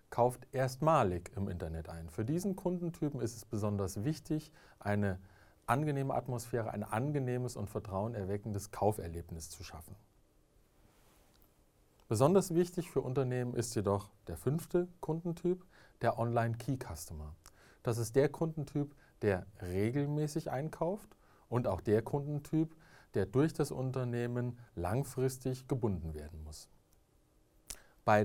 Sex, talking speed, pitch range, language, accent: male, 115 wpm, 100-140 Hz, Kannada, German